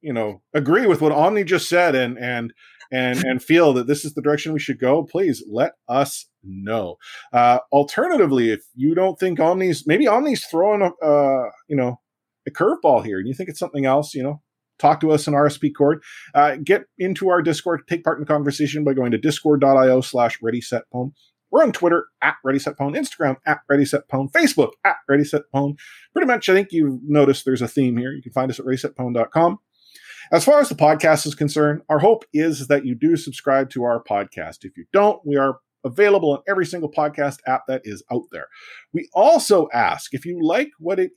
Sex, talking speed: male, 205 wpm